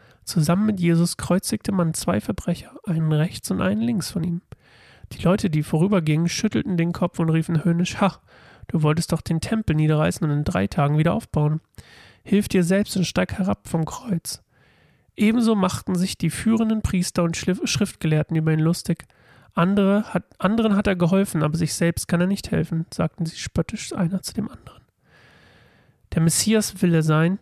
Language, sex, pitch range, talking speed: German, male, 155-185 Hz, 175 wpm